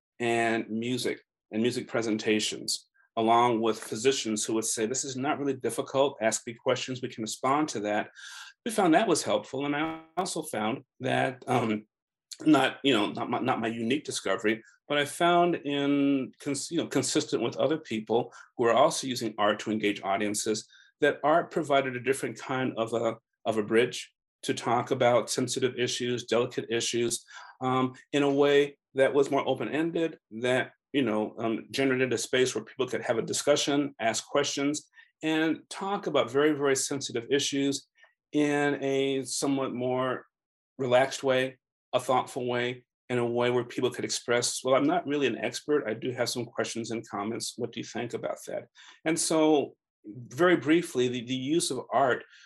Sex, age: male, 40-59